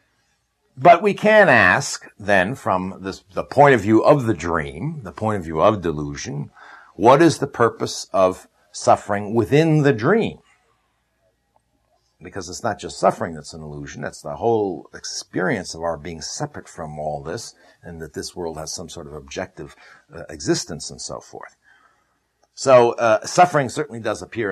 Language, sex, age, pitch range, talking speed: English, male, 60-79, 90-150 Hz, 165 wpm